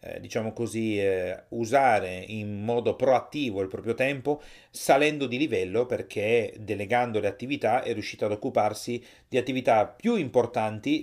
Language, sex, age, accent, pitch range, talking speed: Italian, male, 30-49, native, 105-125 Hz, 135 wpm